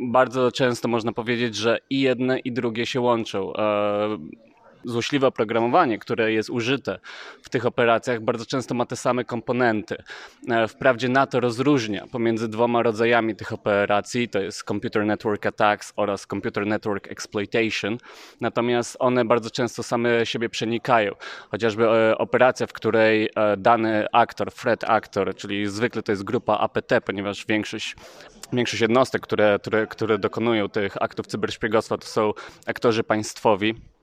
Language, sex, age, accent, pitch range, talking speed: Polish, male, 20-39, native, 110-125 Hz, 140 wpm